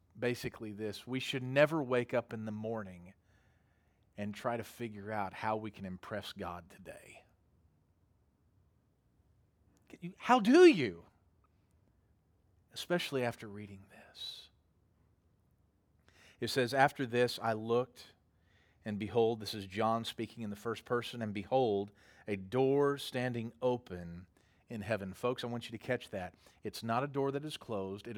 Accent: American